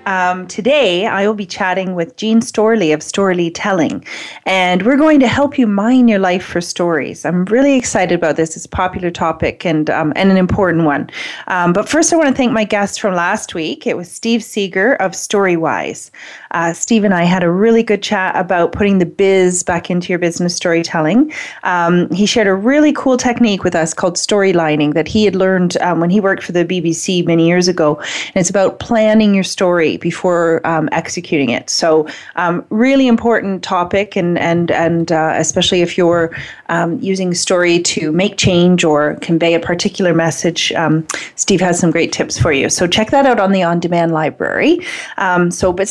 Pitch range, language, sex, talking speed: 170-210 Hz, English, female, 195 wpm